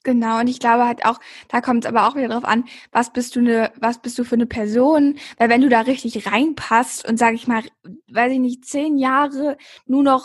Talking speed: 240 wpm